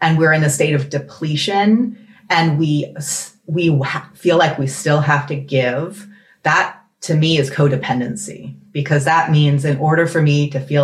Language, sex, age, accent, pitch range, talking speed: English, female, 30-49, American, 140-195 Hz, 170 wpm